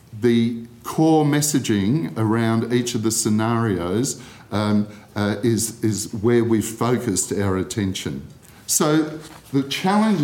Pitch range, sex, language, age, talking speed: 100-130 Hz, male, English, 50-69, 115 wpm